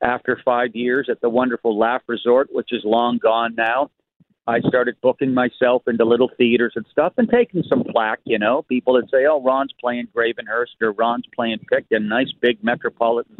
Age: 50-69